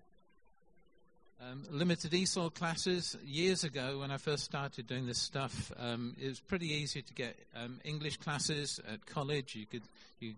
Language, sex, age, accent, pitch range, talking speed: English, male, 50-69, British, 120-165 Hz, 160 wpm